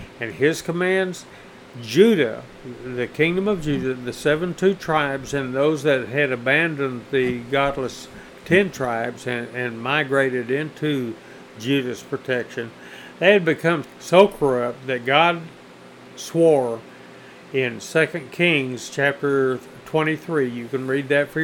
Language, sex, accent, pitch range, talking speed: English, male, American, 125-155 Hz, 125 wpm